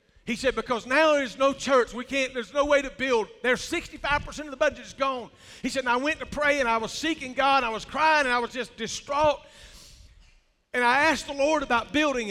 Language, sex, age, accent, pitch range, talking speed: English, male, 50-69, American, 255-320 Hz, 240 wpm